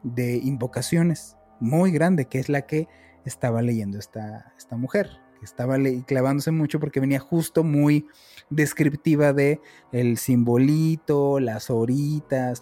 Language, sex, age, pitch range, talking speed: Spanish, male, 30-49, 135-165 Hz, 135 wpm